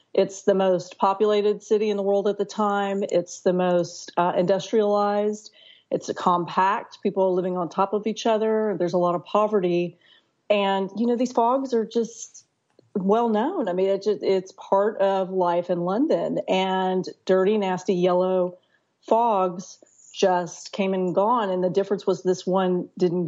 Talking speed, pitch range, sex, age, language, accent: 170 wpm, 185-210 Hz, female, 40-59, English, American